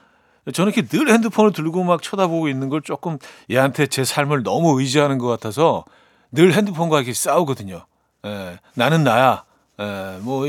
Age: 40-59